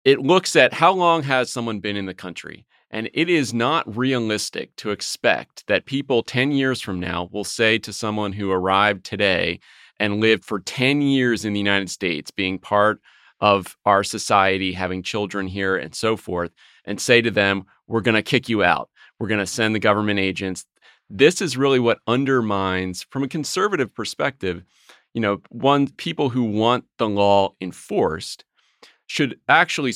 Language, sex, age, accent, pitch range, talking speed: English, male, 30-49, American, 100-125 Hz, 175 wpm